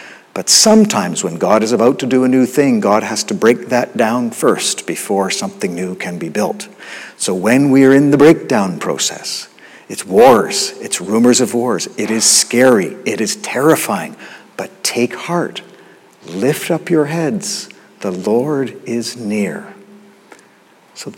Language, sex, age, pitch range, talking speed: English, male, 50-69, 120-160 Hz, 160 wpm